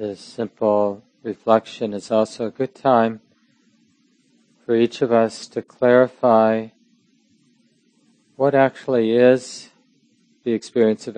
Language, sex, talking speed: English, male, 105 wpm